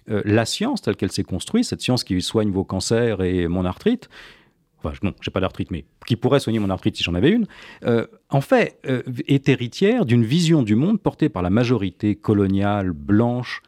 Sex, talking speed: male, 210 wpm